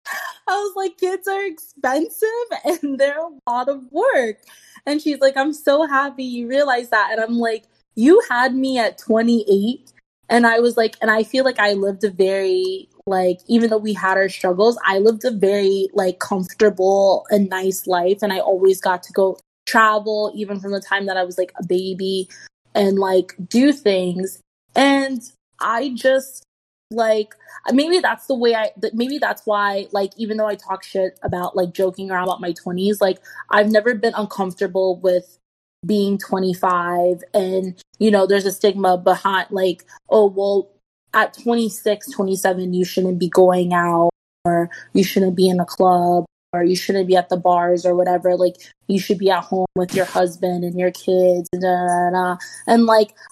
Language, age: English, 20-39